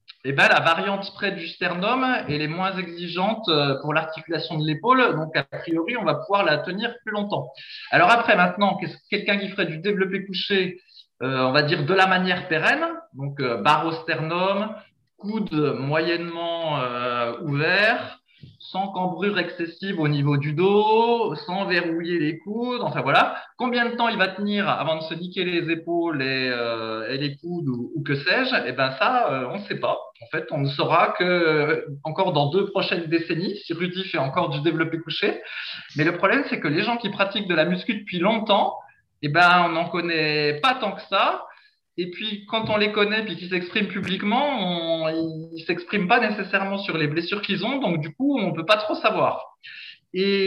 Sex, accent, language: male, French, French